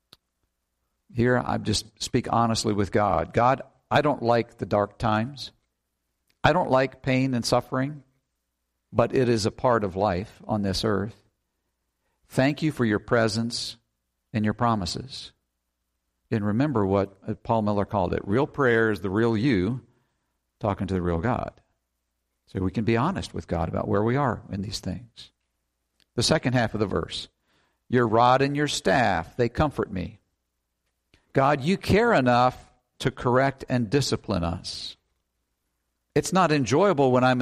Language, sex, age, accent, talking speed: English, male, 50-69, American, 155 wpm